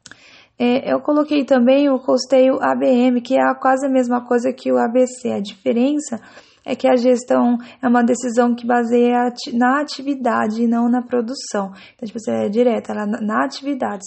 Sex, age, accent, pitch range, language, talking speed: female, 10-29, Brazilian, 230-260 Hz, English, 160 wpm